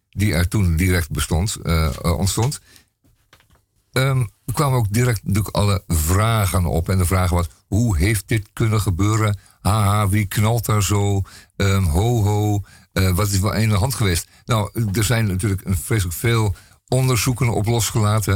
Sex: male